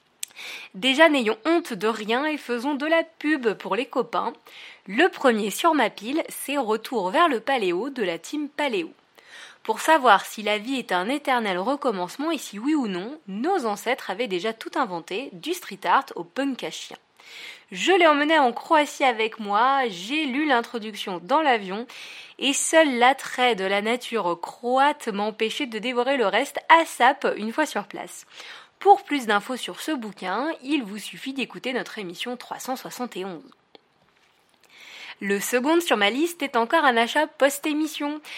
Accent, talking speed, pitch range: French, 170 wpm, 215-295 Hz